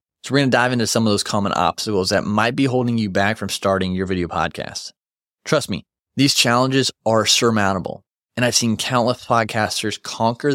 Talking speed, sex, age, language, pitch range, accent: 195 wpm, male, 30-49, English, 105-125 Hz, American